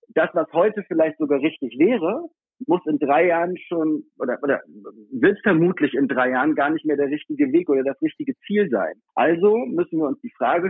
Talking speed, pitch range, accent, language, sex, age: 200 wpm, 150-245 Hz, German, German, male, 50-69